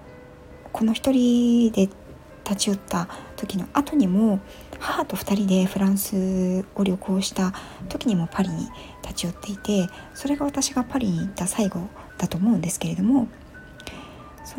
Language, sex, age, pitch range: Japanese, female, 60-79, 180-230 Hz